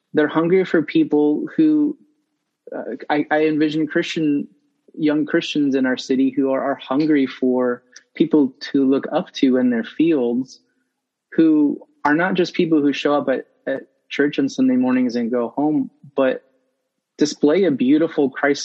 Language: English